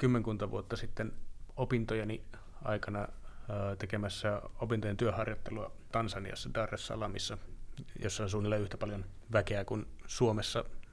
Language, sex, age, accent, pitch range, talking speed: Finnish, male, 30-49, native, 105-115 Hz, 100 wpm